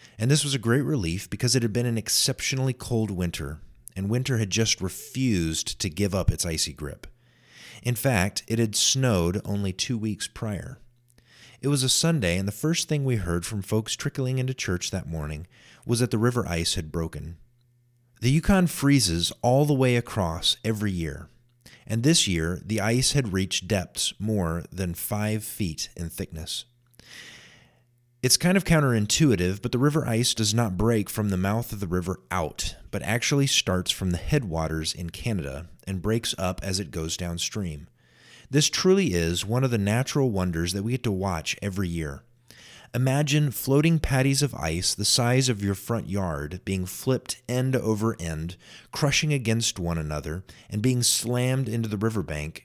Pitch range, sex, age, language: 90-125 Hz, male, 30-49, English